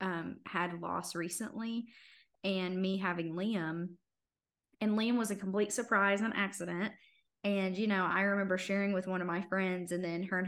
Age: 20-39